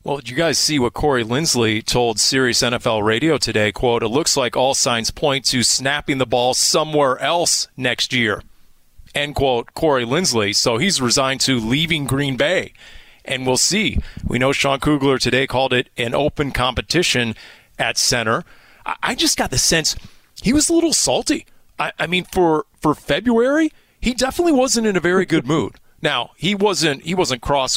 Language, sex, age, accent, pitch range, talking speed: English, male, 30-49, American, 120-170 Hz, 180 wpm